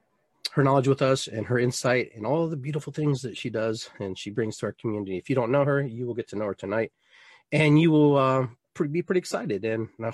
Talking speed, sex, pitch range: 255 wpm, male, 110-140 Hz